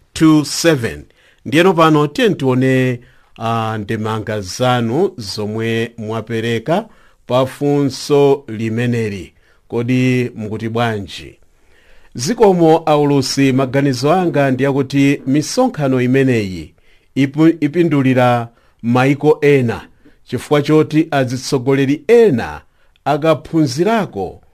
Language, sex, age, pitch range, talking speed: English, male, 50-69, 115-150 Hz, 75 wpm